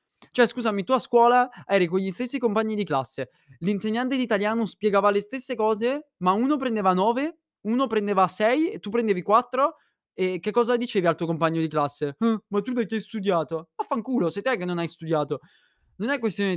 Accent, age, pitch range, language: native, 20-39, 170-235 Hz, Italian